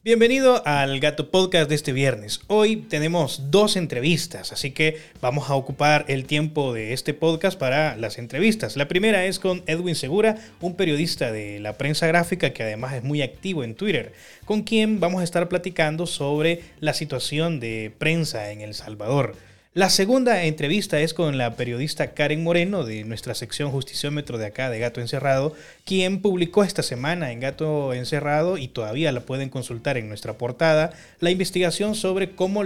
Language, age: Spanish, 30-49